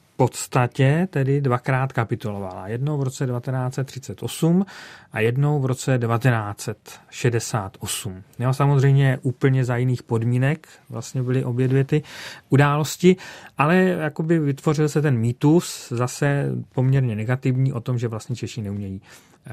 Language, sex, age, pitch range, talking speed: Czech, male, 40-59, 120-145 Hz, 120 wpm